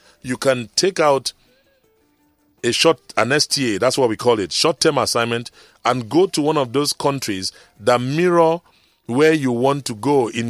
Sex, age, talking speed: male, 40-59, 170 wpm